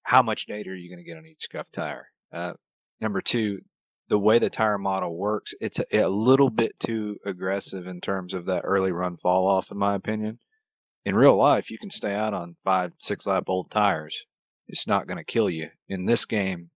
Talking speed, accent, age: 220 wpm, American, 30-49